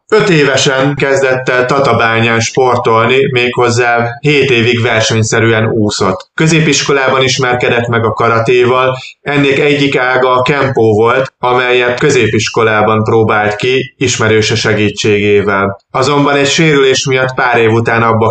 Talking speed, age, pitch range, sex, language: 120 wpm, 30-49, 115-140 Hz, male, Hungarian